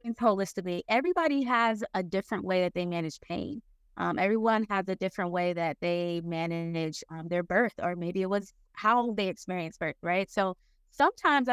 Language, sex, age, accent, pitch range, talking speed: English, female, 20-39, American, 190-240 Hz, 170 wpm